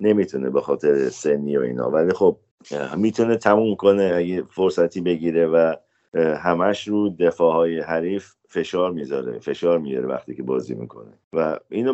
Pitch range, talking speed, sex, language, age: 80-110 Hz, 135 wpm, male, Persian, 50-69